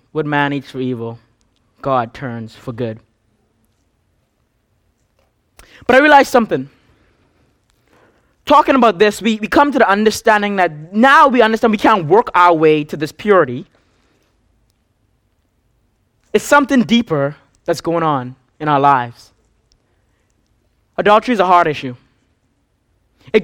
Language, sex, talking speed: English, male, 125 wpm